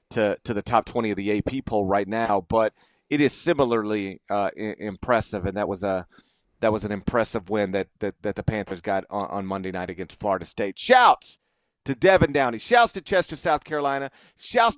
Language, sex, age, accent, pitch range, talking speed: English, male, 40-59, American, 110-145 Hz, 200 wpm